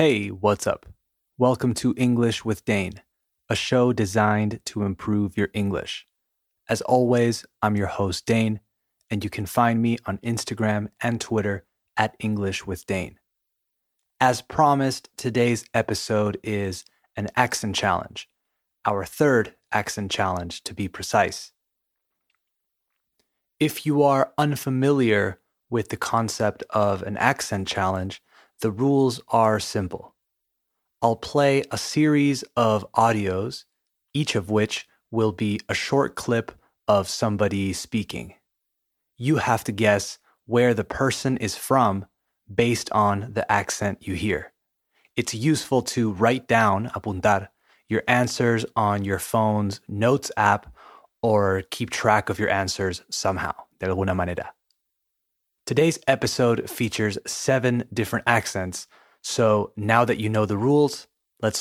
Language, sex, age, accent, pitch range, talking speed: Spanish, male, 20-39, American, 100-120 Hz, 130 wpm